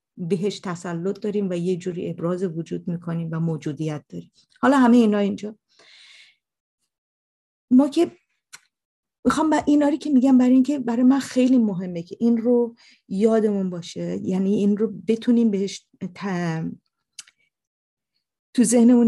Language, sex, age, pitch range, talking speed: Persian, female, 40-59, 175-225 Hz, 130 wpm